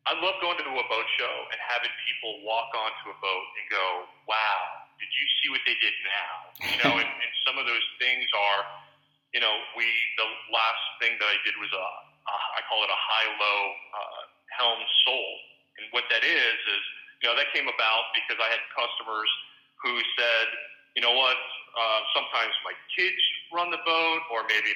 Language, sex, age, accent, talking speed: English, male, 40-59, American, 200 wpm